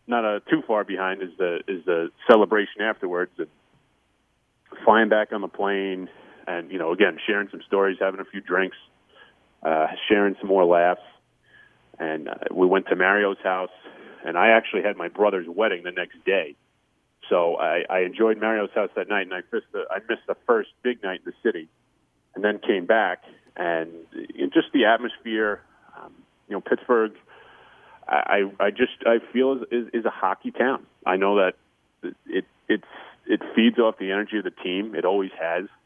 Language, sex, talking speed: English, male, 185 wpm